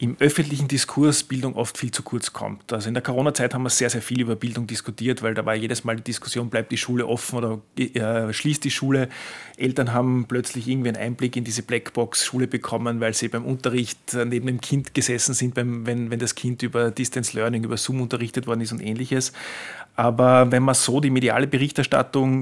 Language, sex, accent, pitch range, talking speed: German, male, Austrian, 115-130 Hz, 200 wpm